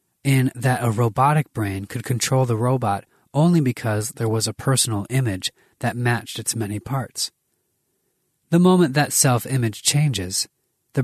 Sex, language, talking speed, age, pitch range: male, English, 145 wpm, 30-49, 105-135 Hz